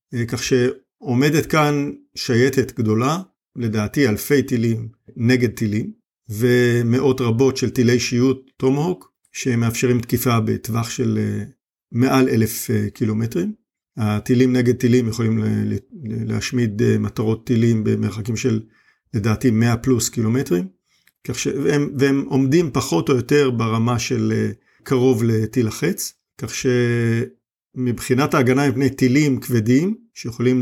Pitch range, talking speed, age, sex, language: 115-130 Hz, 120 wpm, 50-69, male, Hebrew